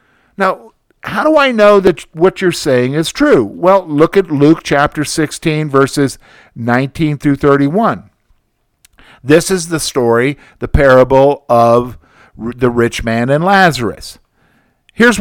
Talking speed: 135 wpm